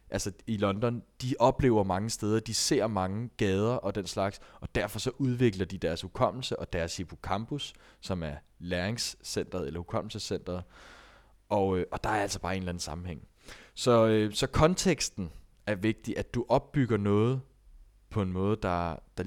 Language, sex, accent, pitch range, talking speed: Danish, male, native, 100-130 Hz, 165 wpm